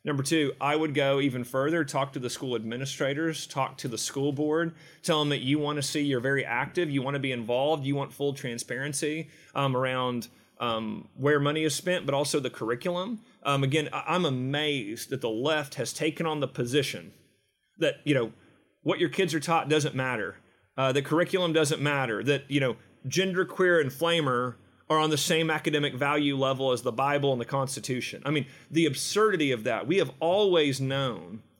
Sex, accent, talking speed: male, American, 195 wpm